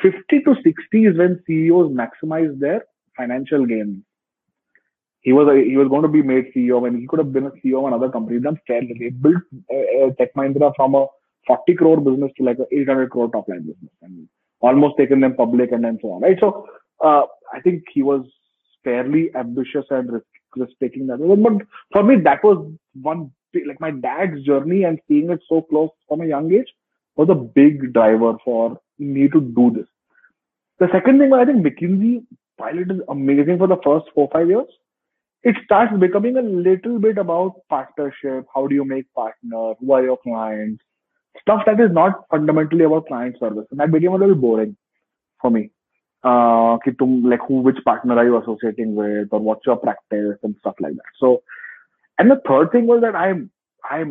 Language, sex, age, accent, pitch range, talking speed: English, male, 30-49, Indian, 125-180 Hz, 195 wpm